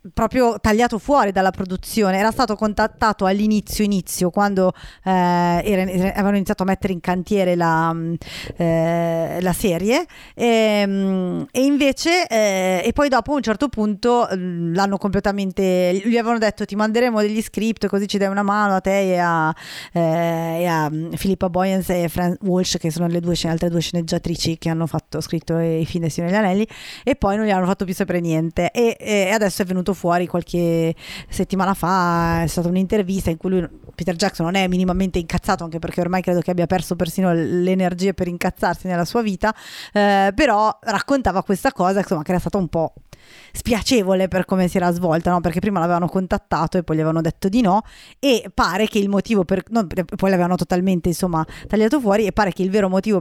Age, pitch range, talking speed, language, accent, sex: 30-49, 175-205 Hz, 190 wpm, Italian, native, female